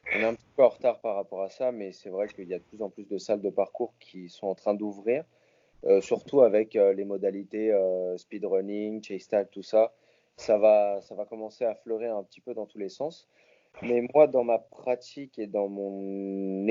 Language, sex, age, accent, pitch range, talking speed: French, male, 30-49, French, 100-125 Hz, 225 wpm